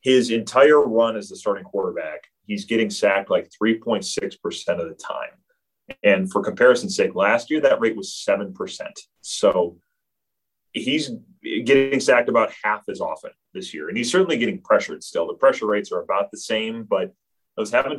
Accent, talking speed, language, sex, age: American, 170 wpm, English, male, 30-49